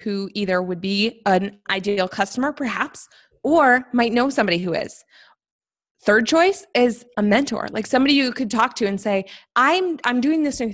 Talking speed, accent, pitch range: 180 wpm, American, 205-250 Hz